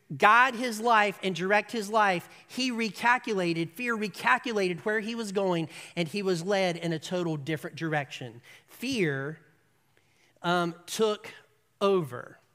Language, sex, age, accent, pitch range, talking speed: Russian, male, 40-59, American, 150-225 Hz, 135 wpm